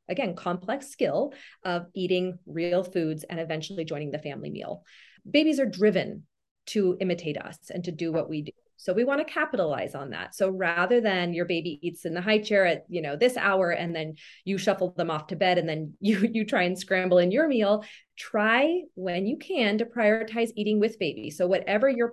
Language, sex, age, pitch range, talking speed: English, female, 30-49, 175-230 Hz, 210 wpm